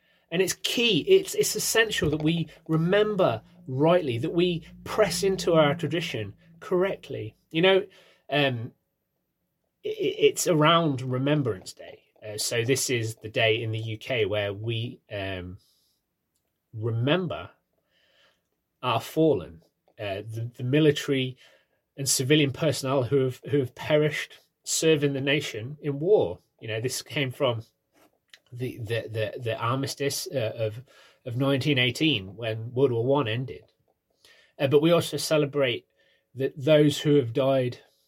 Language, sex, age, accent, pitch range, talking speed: English, male, 30-49, British, 125-165 Hz, 135 wpm